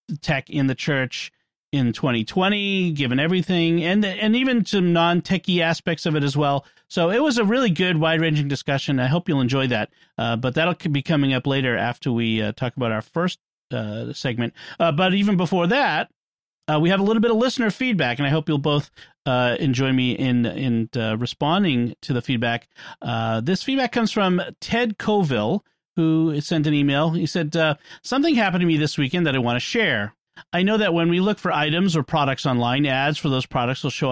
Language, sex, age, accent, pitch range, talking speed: English, male, 40-59, American, 130-180 Hz, 210 wpm